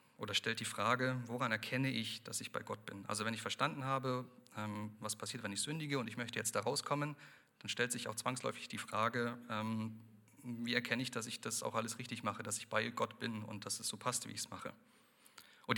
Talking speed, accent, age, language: 230 wpm, German, 40-59, German